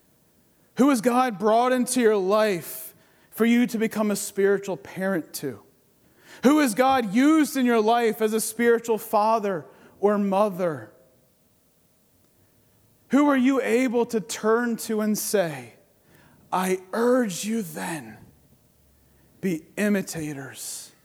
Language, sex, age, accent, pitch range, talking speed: English, male, 30-49, American, 165-230 Hz, 125 wpm